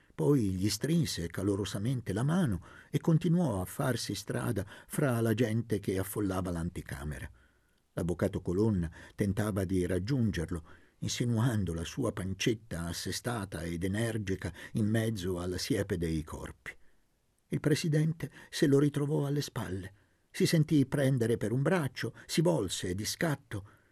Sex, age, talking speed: male, 50-69, 130 wpm